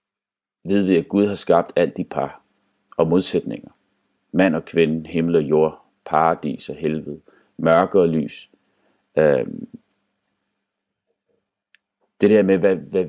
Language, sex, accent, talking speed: Danish, male, native, 135 wpm